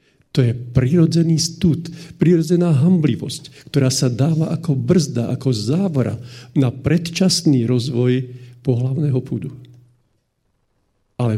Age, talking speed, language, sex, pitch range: 50-69, 100 wpm, Slovak, male, 120-150 Hz